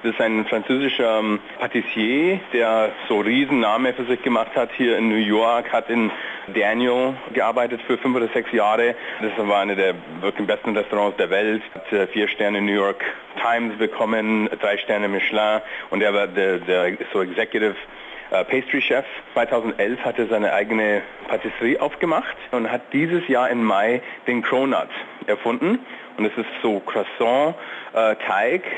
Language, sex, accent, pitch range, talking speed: German, male, German, 105-120 Hz, 165 wpm